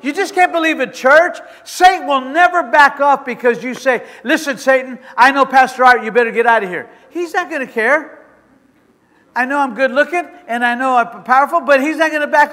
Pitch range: 220-295 Hz